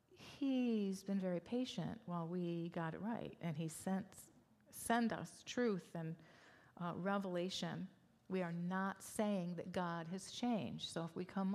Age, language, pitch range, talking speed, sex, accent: 40-59, English, 185-230 Hz, 155 wpm, female, American